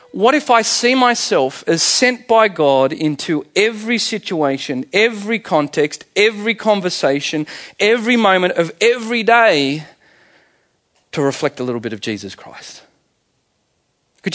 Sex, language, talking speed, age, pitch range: male, English, 125 wpm, 40-59, 155-215 Hz